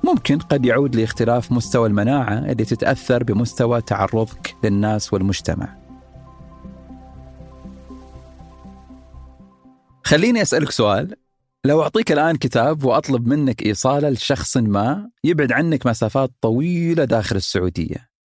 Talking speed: 100 wpm